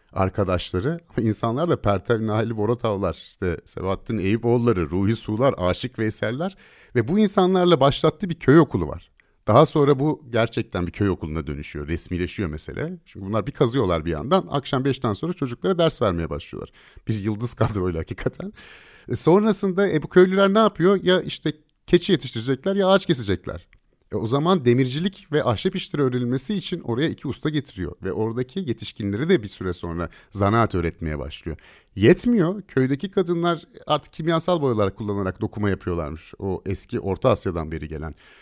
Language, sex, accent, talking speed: Turkish, male, native, 155 wpm